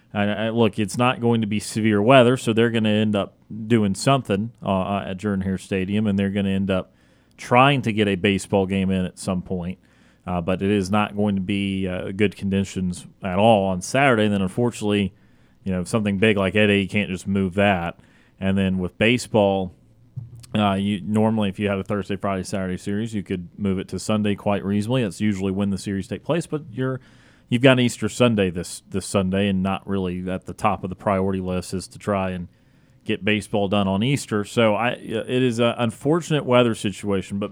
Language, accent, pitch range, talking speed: English, American, 95-115 Hz, 215 wpm